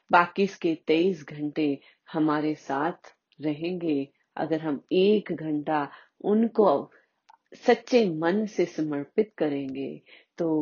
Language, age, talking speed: Hindi, 30-49, 100 wpm